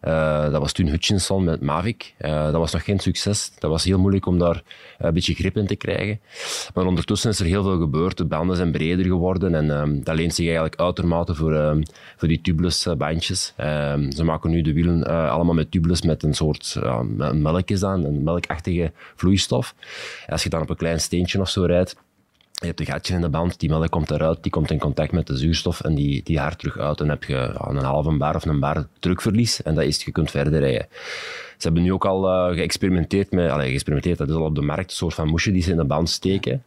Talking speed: 240 wpm